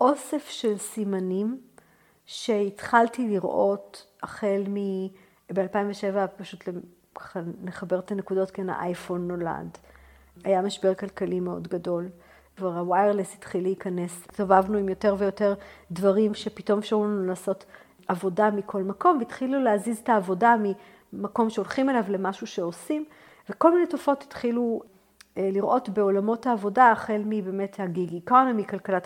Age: 50-69